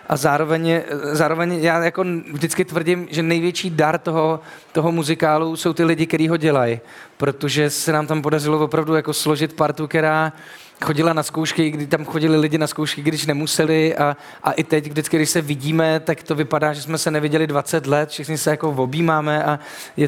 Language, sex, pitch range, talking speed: Czech, male, 150-160 Hz, 190 wpm